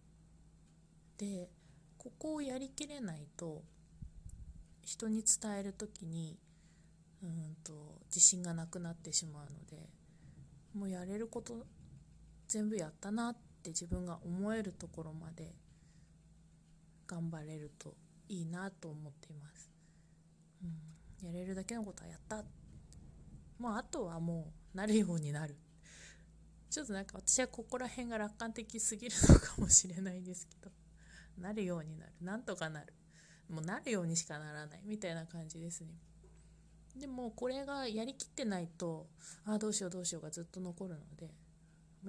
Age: 20-39